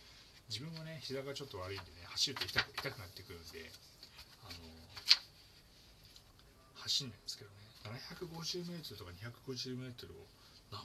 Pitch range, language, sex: 95-125 Hz, Japanese, male